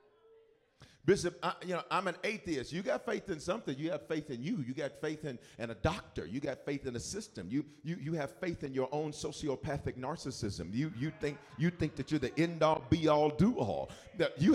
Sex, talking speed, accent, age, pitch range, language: male, 225 wpm, American, 40-59, 140-200 Hz, English